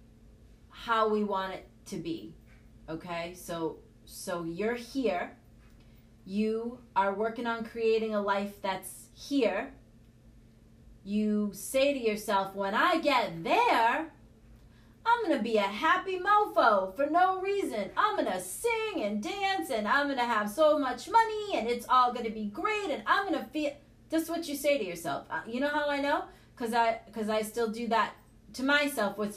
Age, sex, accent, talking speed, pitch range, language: 30-49, female, American, 165 wpm, 200-285 Hz, English